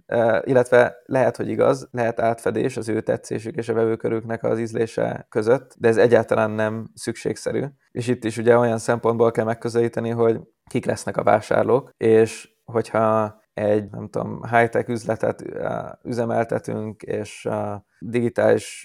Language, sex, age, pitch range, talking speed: Hungarian, male, 20-39, 110-120 Hz, 135 wpm